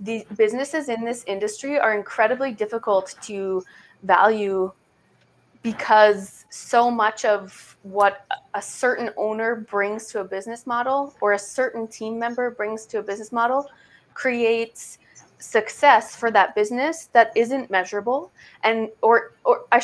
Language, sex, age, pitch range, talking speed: English, female, 20-39, 200-240 Hz, 135 wpm